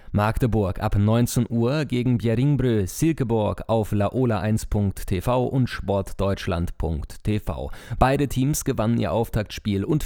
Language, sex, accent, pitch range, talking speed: German, male, German, 95-125 Hz, 100 wpm